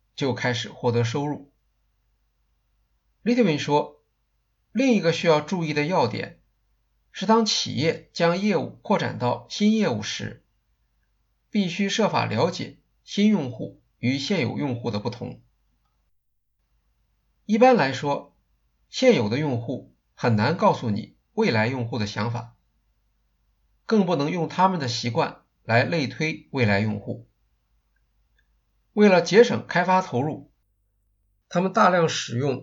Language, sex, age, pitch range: Chinese, male, 50-69, 115-190 Hz